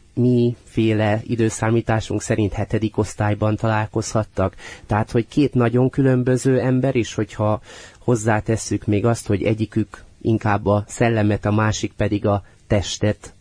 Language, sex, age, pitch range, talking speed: Hungarian, male, 30-49, 95-110 Hz, 125 wpm